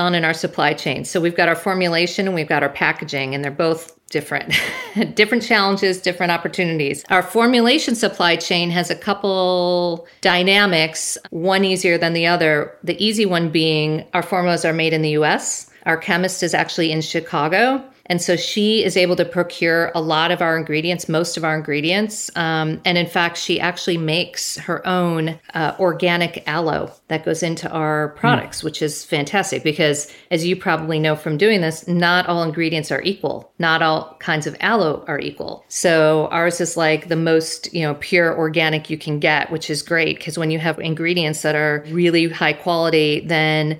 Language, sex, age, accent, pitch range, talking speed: English, female, 50-69, American, 155-180 Hz, 185 wpm